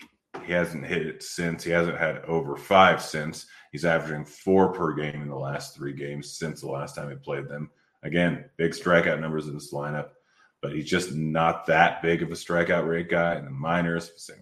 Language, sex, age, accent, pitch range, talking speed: English, male, 30-49, American, 75-85 Hz, 210 wpm